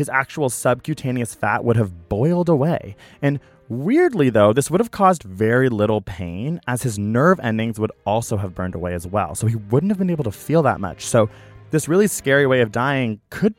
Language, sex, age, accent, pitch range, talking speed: English, male, 20-39, American, 105-140 Hz, 210 wpm